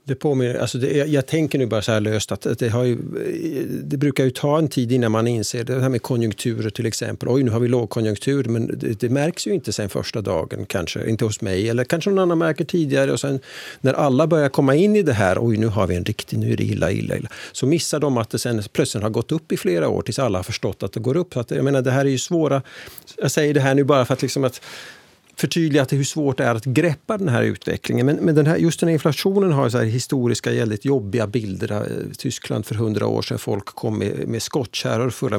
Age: 50-69